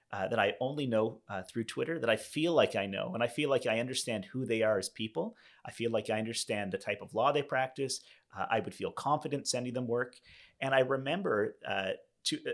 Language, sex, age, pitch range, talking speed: English, male, 30-49, 110-140 Hz, 235 wpm